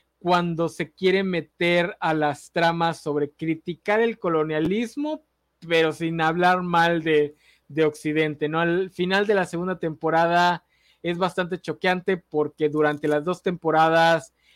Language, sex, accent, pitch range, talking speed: Spanish, male, Mexican, 155-190 Hz, 135 wpm